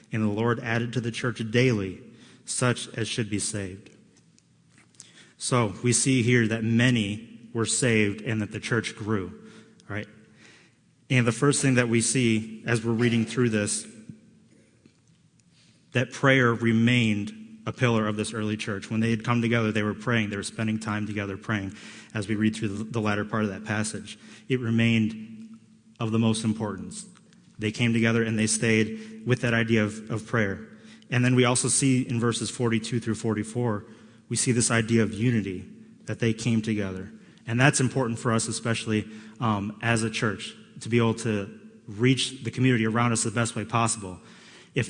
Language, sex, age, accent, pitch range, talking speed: English, male, 30-49, American, 110-125 Hz, 180 wpm